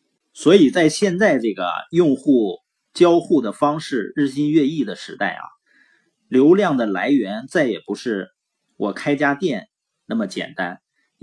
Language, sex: Chinese, male